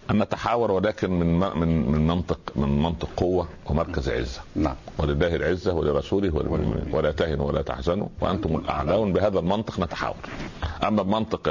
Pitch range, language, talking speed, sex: 80-100 Hz, Arabic, 135 wpm, male